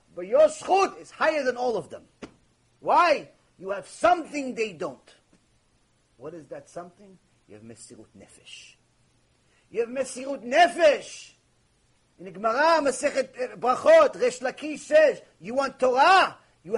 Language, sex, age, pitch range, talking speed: English, male, 40-59, 205-285 Hz, 135 wpm